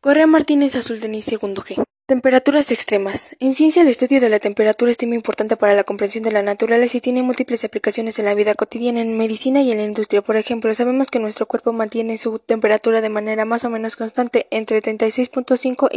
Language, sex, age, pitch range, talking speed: Spanish, female, 10-29, 220-245 Hz, 205 wpm